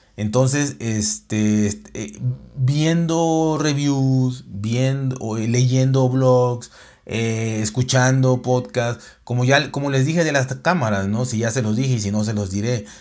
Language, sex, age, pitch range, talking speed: Spanish, male, 30-49, 105-130 Hz, 150 wpm